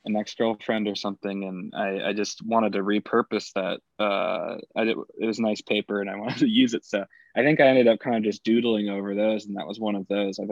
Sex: male